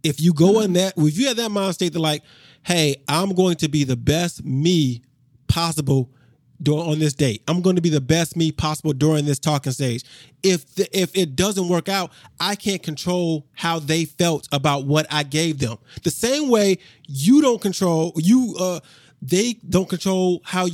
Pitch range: 150-215 Hz